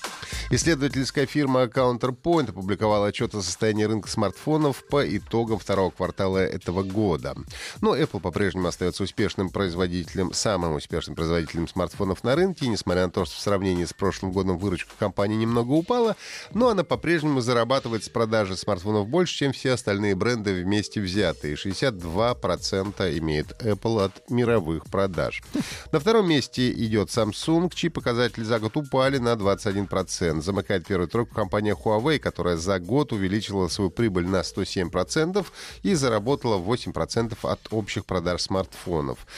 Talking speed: 140 wpm